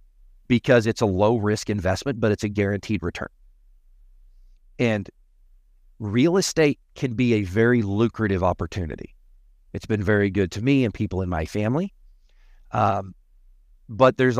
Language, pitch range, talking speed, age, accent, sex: English, 95-125 Hz, 140 wpm, 40-59, American, male